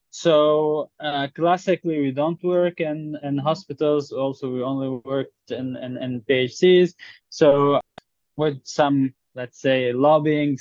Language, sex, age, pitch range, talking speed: English, male, 20-39, 135-155 Hz, 130 wpm